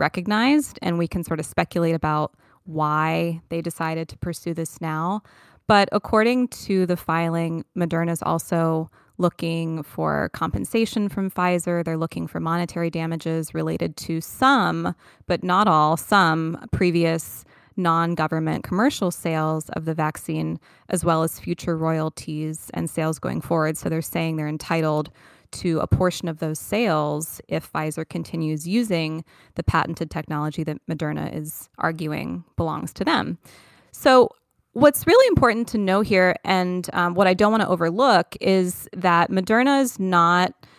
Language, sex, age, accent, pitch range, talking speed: English, female, 20-39, American, 155-185 Hz, 145 wpm